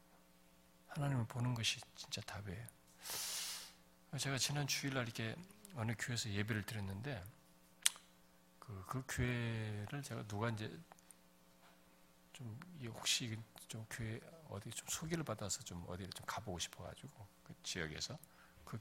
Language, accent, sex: Korean, native, male